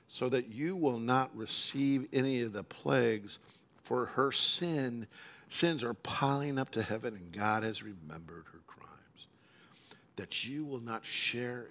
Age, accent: 60-79, American